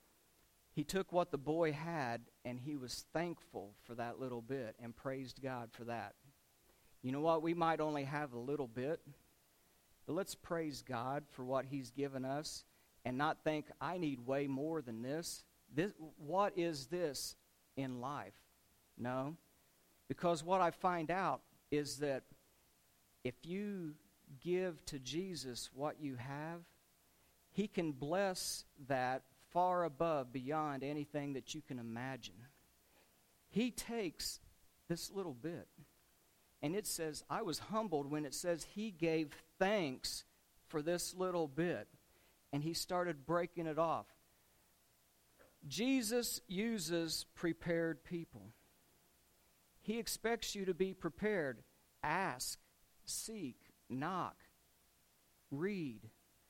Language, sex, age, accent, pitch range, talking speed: English, male, 50-69, American, 130-175 Hz, 130 wpm